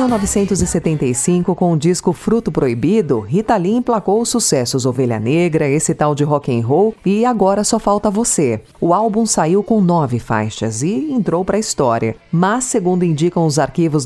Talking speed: 165 wpm